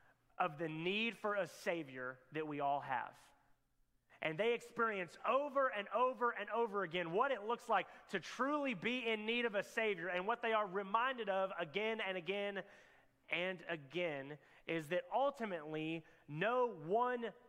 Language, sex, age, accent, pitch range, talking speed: English, male, 30-49, American, 155-215 Hz, 160 wpm